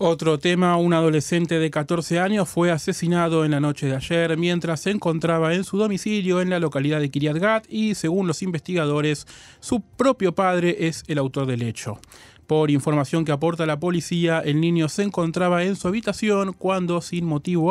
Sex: male